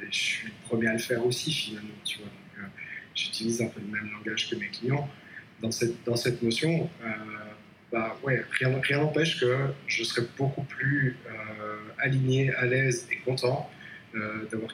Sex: male